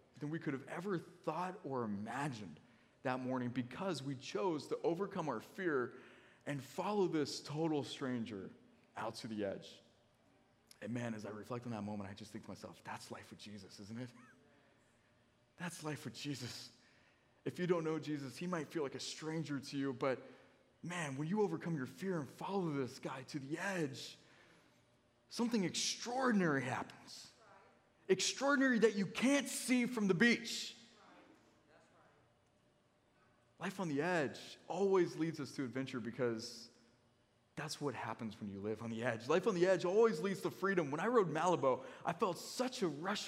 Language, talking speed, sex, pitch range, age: English, 170 wpm, male, 125-195 Hz, 20-39